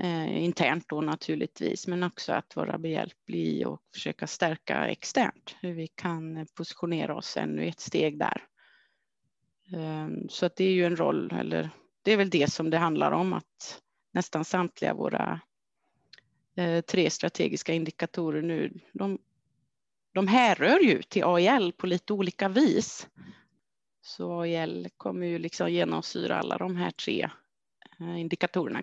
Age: 30-49